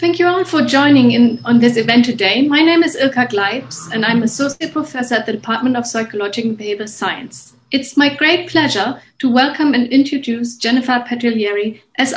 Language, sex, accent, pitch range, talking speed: English, female, German, 225-270 Hz, 185 wpm